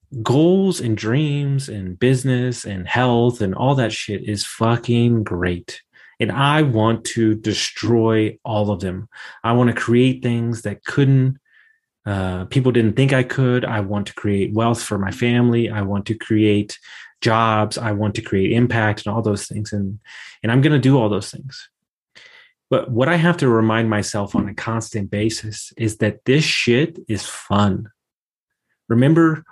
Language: English